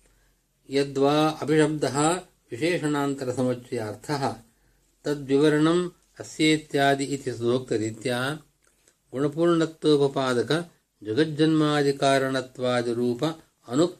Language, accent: Kannada, native